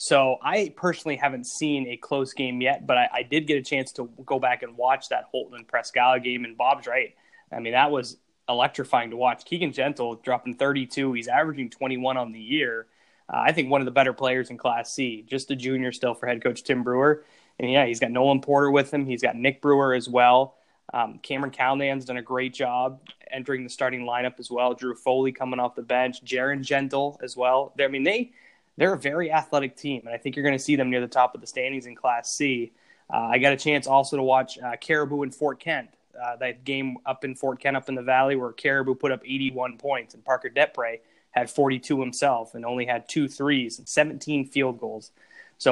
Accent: American